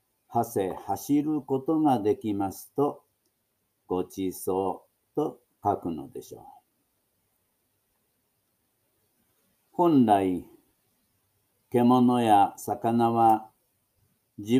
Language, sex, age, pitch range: Japanese, male, 50-69, 105-125 Hz